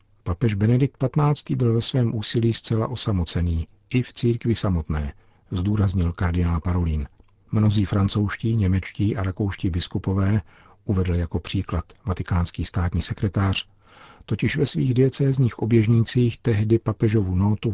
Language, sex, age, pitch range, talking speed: Czech, male, 50-69, 90-115 Hz, 120 wpm